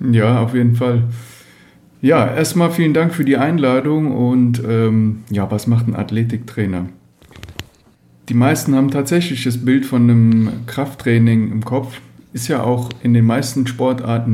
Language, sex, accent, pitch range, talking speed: German, male, German, 105-125 Hz, 150 wpm